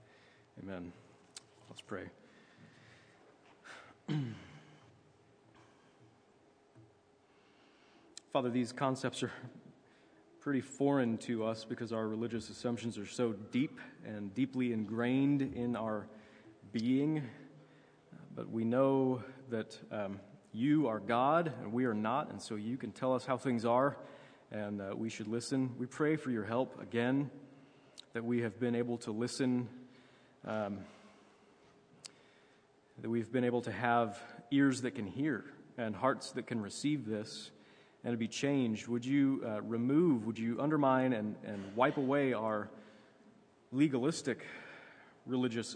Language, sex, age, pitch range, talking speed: English, male, 30-49, 110-135 Hz, 130 wpm